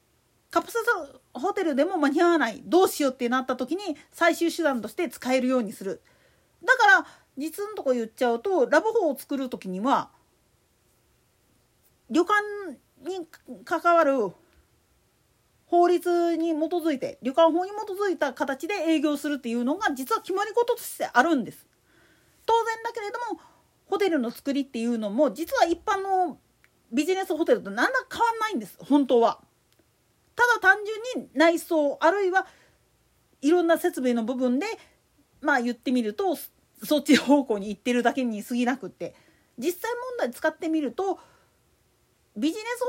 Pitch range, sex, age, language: 260-385 Hz, female, 40-59, Japanese